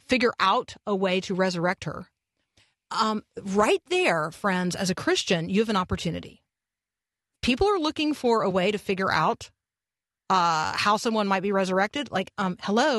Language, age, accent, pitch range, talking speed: English, 40-59, American, 180-235 Hz, 165 wpm